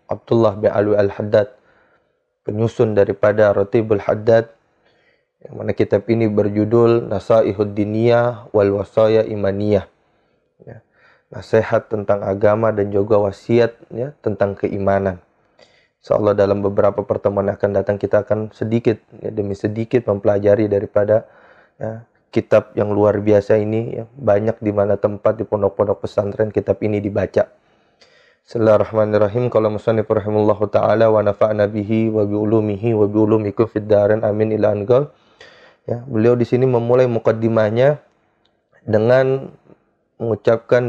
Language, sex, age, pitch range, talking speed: Indonesian, male, 20-39, 105-115 Hz, 115 wpm